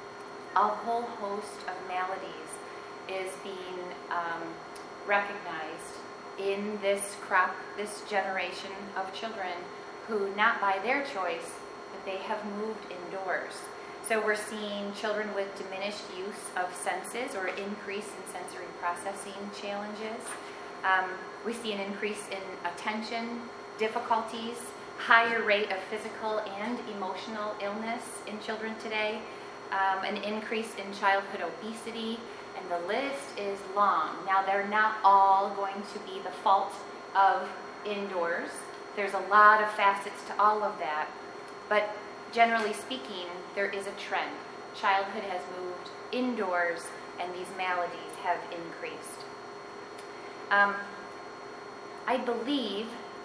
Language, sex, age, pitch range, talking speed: English, female, 30-49, 195-220 Hz, 125 wpm